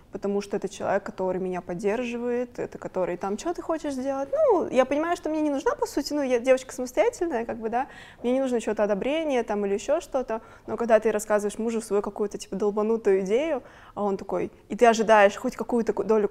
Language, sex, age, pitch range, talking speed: Russian, female, 20-39, 200-245 Hz, 215 wpm